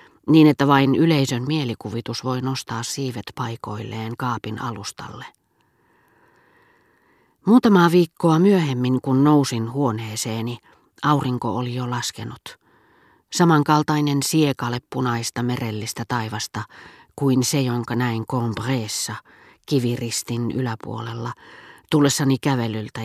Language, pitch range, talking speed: Finnish, 115-140 Hz, 90 wpm